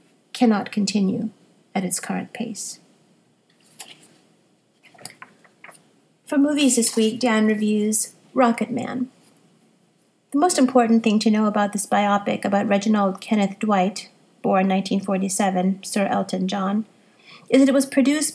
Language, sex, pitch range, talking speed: English, female, 195-230 Hz, 120 wpm